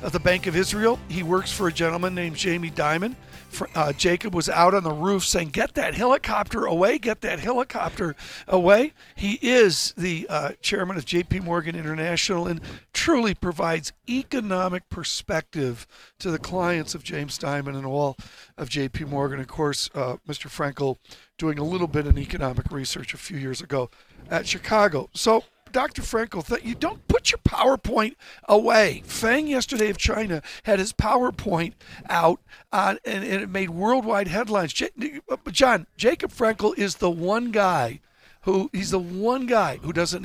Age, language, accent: 60-79, English, American